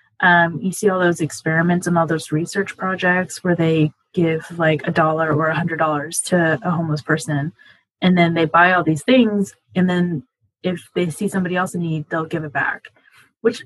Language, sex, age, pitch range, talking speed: English, female, 20-39, 160-200 Hz, 205 wpm